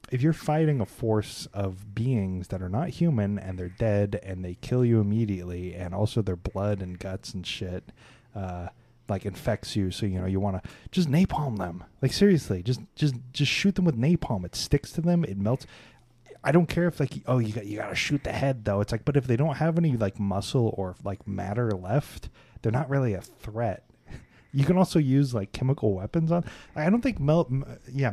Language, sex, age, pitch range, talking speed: English, male, 30-49, 100-140 Hz, 220 wpm